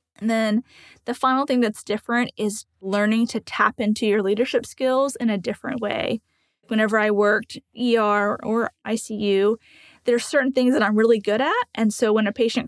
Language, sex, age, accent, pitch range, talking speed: English, female, 20-39, American, 205-240 Hz, 185 wpm